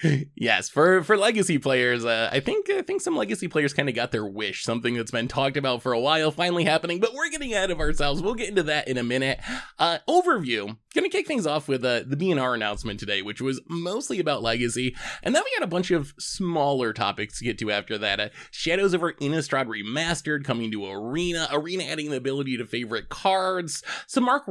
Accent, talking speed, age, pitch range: American, 220 wpm, 20-39, 125-195 Hz